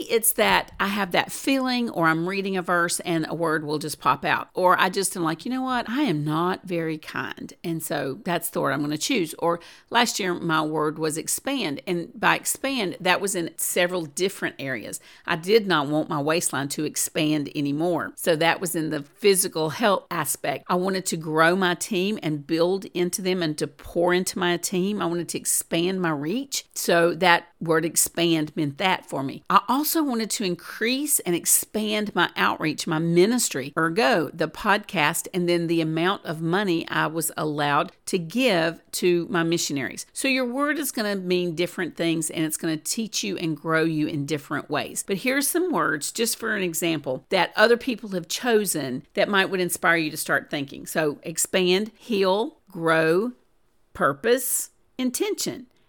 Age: 50-69